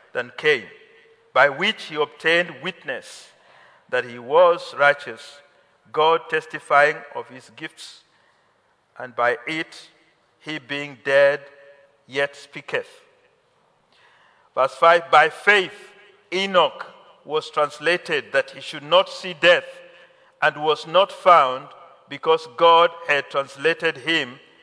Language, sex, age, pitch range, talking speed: English, male, 50-69, 150-195 Hz, 110 wpm